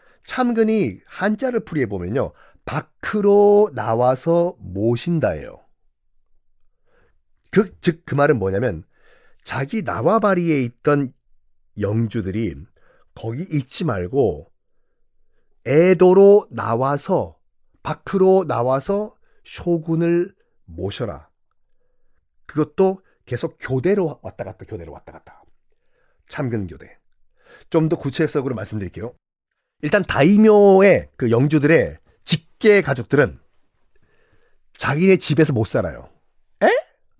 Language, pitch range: Korean, 125-195 Hz